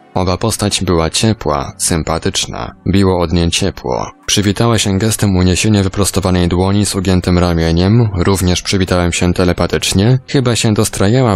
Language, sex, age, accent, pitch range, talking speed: Polish, male, 20-39, native, 90-105 Hz, 130 wpm